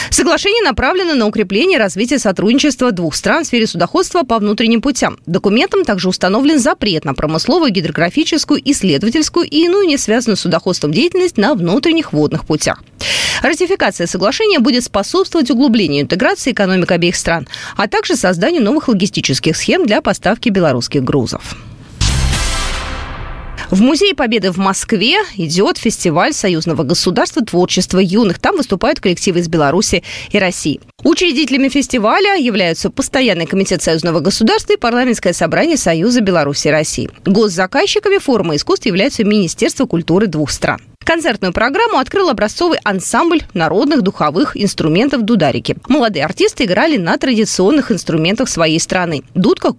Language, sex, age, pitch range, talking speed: Russian, female, 20-39, 170-285 Hz, 135 wpm